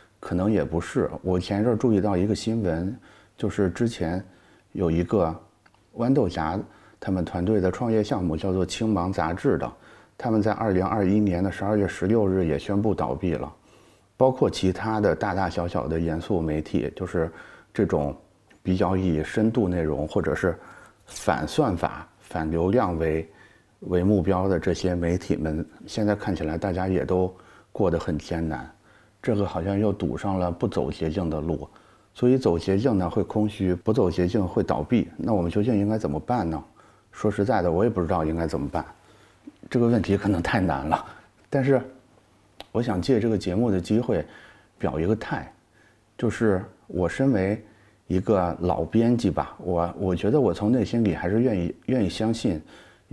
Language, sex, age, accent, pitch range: Chinese, male, 30-49, native, 85-110 Hz